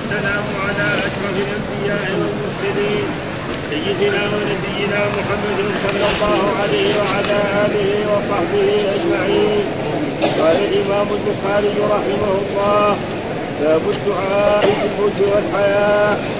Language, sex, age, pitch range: Arabic, male, 40-59, 200-205 Hz